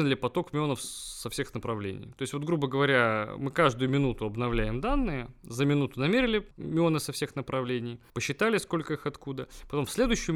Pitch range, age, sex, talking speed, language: 120-155 Hz, 20-39, male, 175 wpm, Russian